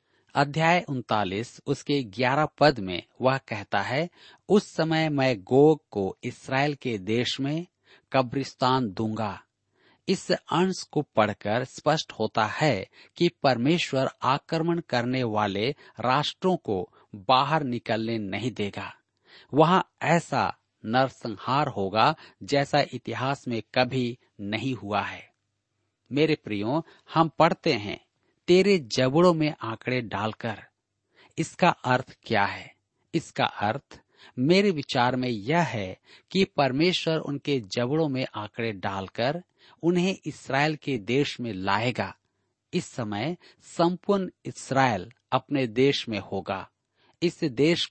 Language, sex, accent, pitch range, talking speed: Hindi, male, native, 110-155 Hz, 115 wpm